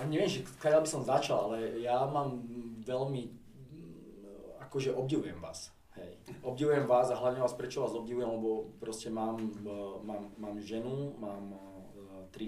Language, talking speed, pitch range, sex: Slovak, 140 wpm, 100-120 Hz, male